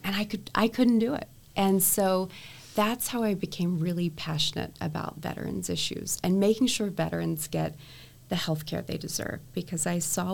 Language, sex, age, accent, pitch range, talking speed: English, female, 30-49, American, 150-185 Hz, 180 wpm